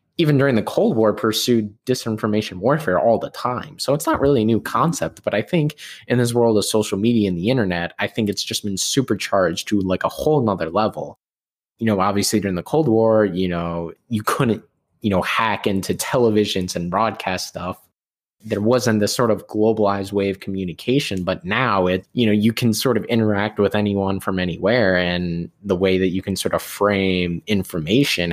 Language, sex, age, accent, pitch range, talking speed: English, male, 20-39, American, 95-115 Hz, 200 wpm